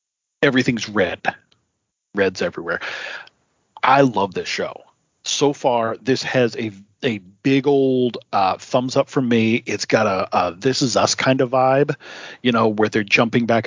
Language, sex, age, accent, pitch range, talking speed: English, male, 40-59, American, 110-130 Hz, 160 wpm